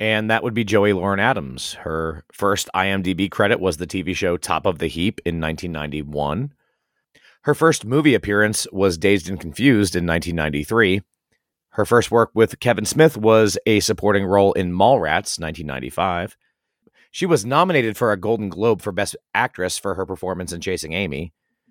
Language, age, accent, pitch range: English, 30-49, American, 90-135 Hz